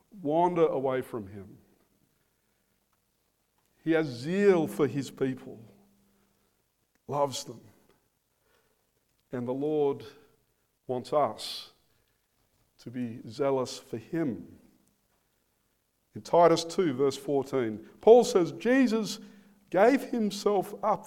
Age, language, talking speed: 50-69, English, 95 wpm